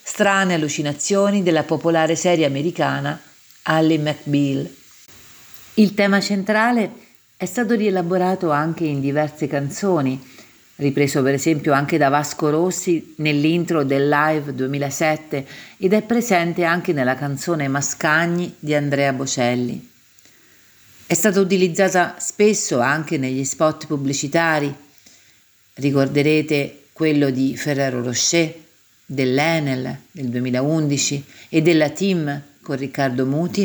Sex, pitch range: female, 135-170 Hz